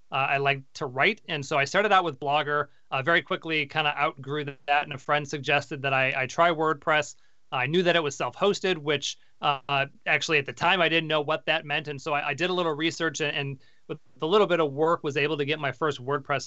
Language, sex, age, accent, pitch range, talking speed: English, male, 30-49, American, 140-165 Hz, 260 wpm